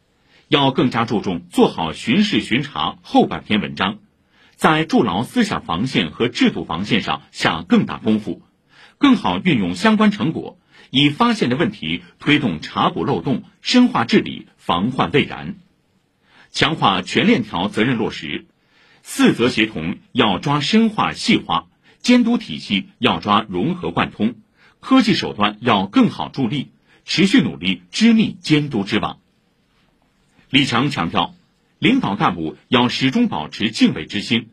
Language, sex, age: Chinese, male, 50-69